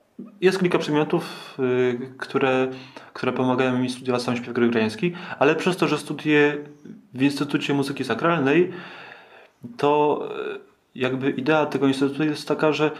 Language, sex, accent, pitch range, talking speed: Polish, male, native, 115-145 Hz, 130 wpm